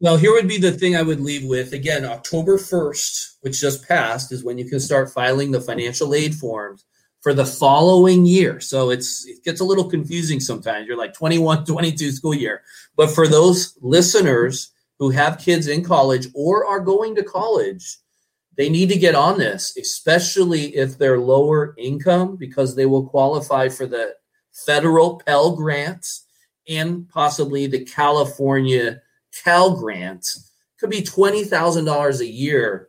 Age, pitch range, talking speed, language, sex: 30-49, 130-175 Hz, 165 wpm, English, male